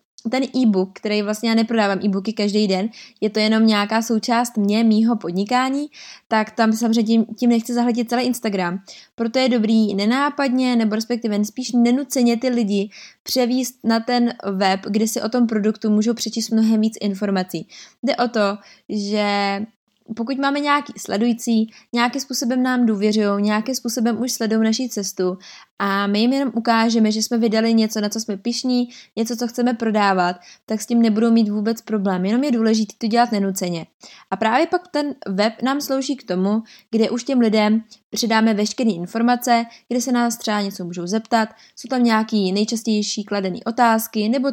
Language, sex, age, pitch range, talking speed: Czech, female, 20-39, 205-240 Hz, 170 wpm